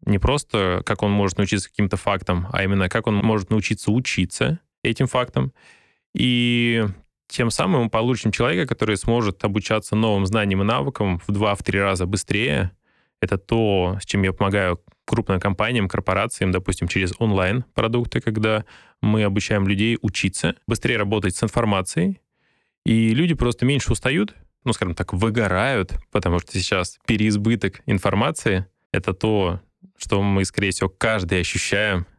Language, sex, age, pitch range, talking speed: Russian, male, 20-39, 95-115 Hz, 145 wpm